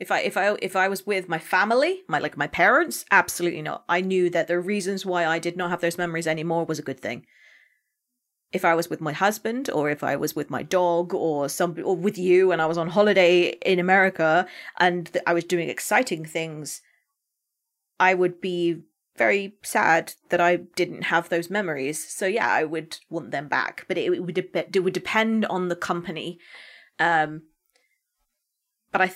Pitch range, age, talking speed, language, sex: 170-200 Hz, 30-49, 200 wpm, English, female